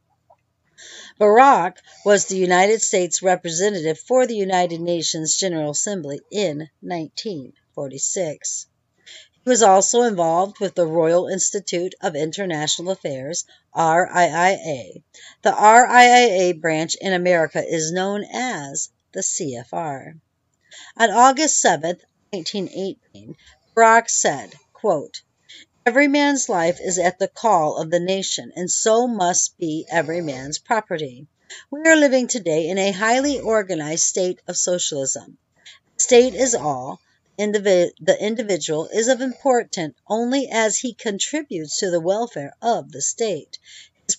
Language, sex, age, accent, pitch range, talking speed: English, female, 50-69, American, 165-220 Hz, 125 wpm